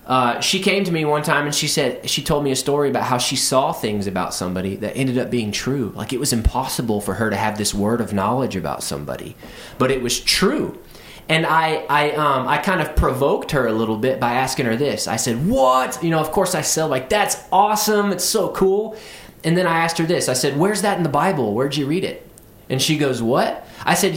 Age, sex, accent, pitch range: 20-39, male, American, 115-160 Hz